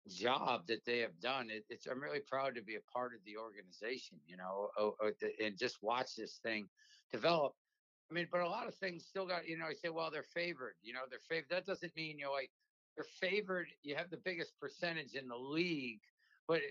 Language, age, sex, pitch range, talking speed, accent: English, 60-79, male, 130-160 Hz, 215 wpm, American